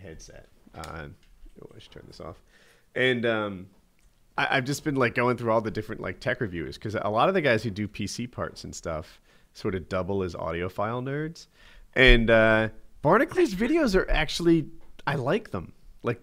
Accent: American